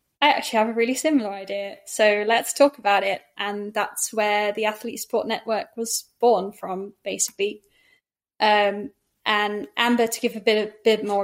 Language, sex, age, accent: English, female, 10-29, British